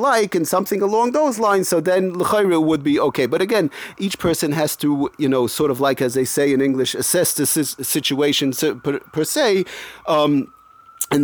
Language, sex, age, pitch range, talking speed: English, male, 30-49, 130-165 Hz, 185 wpm